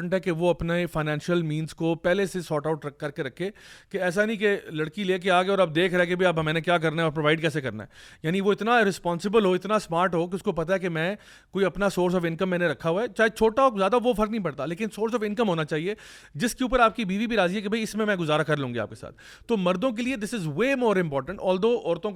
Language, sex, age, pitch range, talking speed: Urdu, male, 30-49, 160-205 Hz, 255 wpm